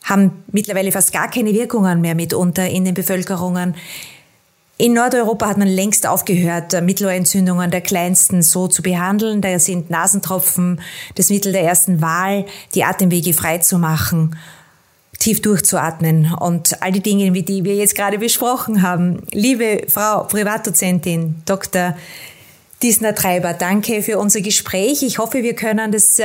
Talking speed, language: 145 wpm, German